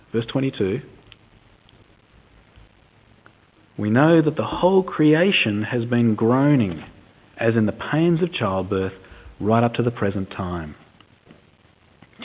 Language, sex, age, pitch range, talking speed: English, male, 50-69, 110-160 Hz, 120 wpm